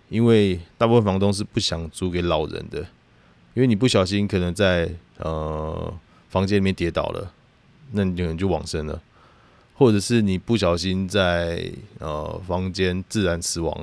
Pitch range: 85-105 Hz